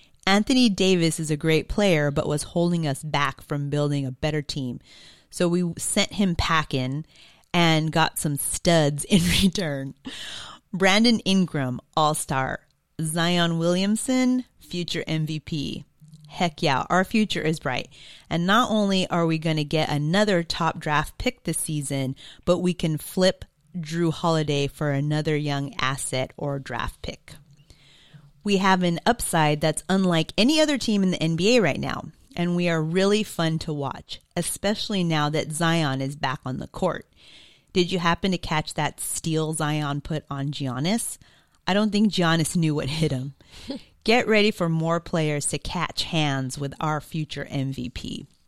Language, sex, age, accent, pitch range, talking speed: English, female, 30-49, American, 150-180 Hz, 160 wpm